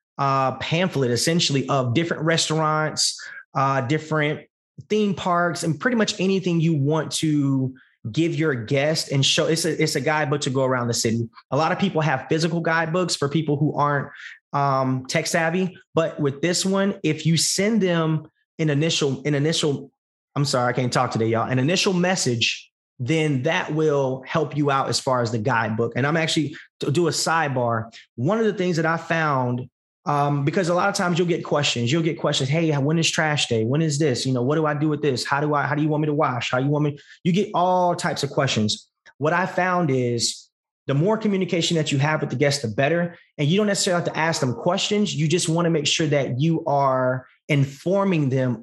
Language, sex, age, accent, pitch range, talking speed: English, male, 20-39, American, 135-170 Hz, 220 wpm